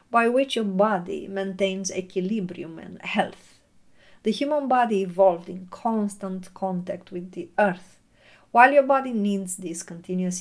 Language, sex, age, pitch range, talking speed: English, female, 50-69, 185-215 Hz, 140 wpm